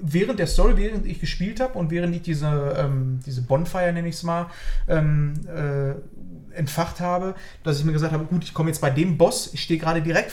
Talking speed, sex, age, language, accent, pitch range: 205 wpm, male, 30-49, German, German, 140-170 Hz